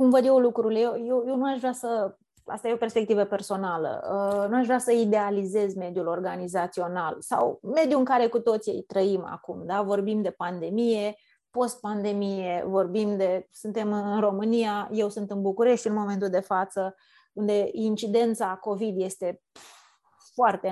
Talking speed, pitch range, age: 155 wpm, 200-245 Hz, 20-39